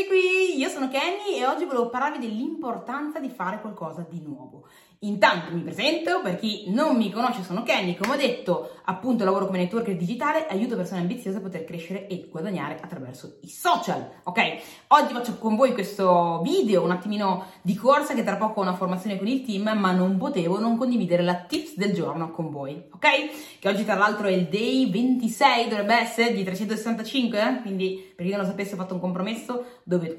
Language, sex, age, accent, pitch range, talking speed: Italian, female, 20-39, native, 175-235 Hz, 195 wpm